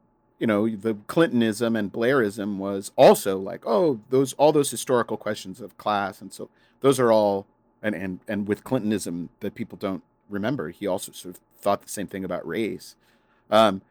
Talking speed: 180 wpm